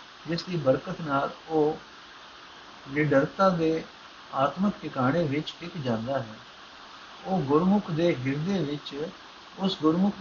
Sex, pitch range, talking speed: male, 135-180 Hz, 70 wpm